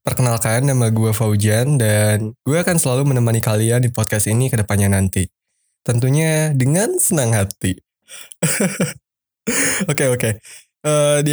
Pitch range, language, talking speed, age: 110-135 Hz, Indonesian, 140 wpm, 10-29